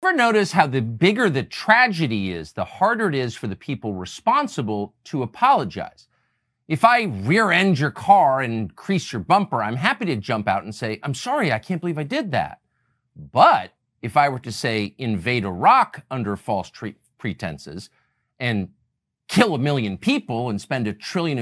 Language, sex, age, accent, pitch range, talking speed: English, male, 50-69, American, 110-180 Hz, 180 wpm